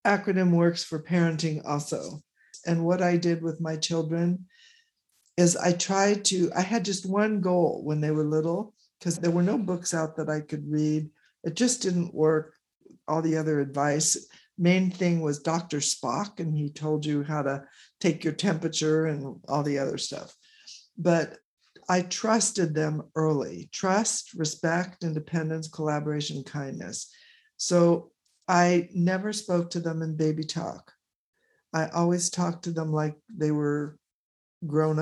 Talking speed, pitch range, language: 155 wpm, 155-180 Hz, English